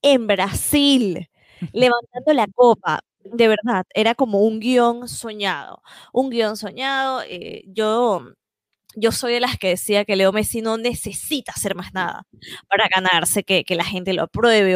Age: 20-39